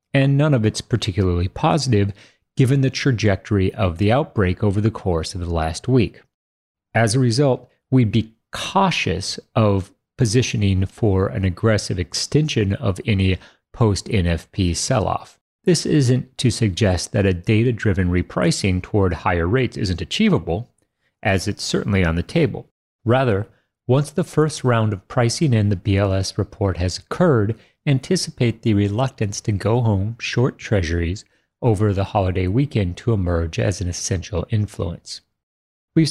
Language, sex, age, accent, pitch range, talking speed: English, male, 30-49, American, 95-125 Hz, 145 wpm